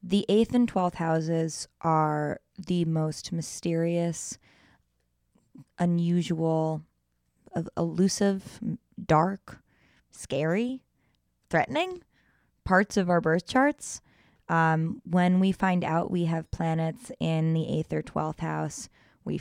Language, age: English, 20-39